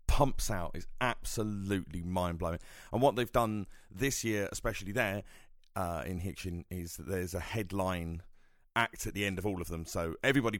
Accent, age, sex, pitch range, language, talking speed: British, 30-49, male, 90-115 Hz, English, 180 wpm